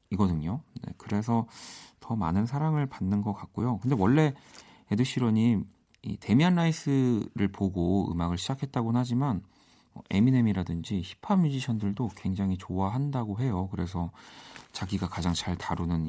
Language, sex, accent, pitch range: Korean, male, native, 95-125 Hz